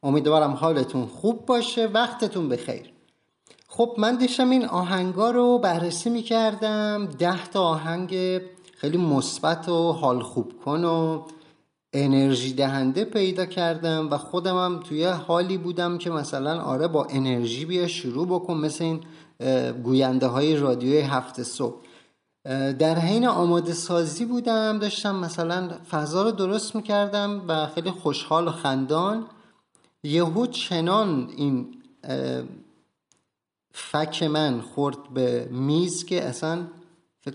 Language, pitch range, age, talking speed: Persian, 140-180 Hz, 30-49, 120 wpm